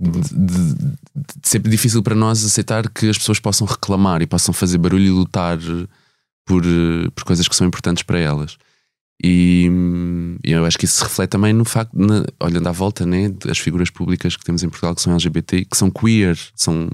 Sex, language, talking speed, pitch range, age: male, Portuguese, 200 wpm, 85-100 Hz, 20-39